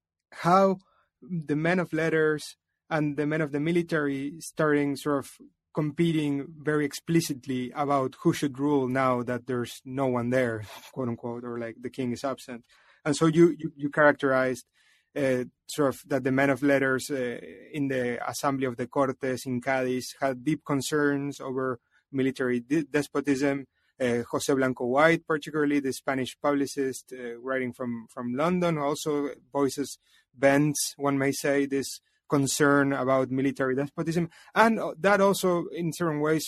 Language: English